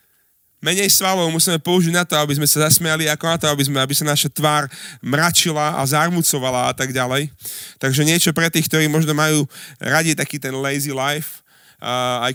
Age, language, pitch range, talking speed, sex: 30-49, Slovak, 140-175 Hz, 185 wpm, male